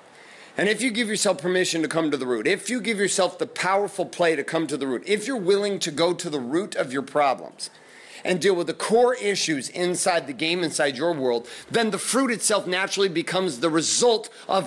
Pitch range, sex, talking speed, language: 155-200 Hz, male, 225 wpm, English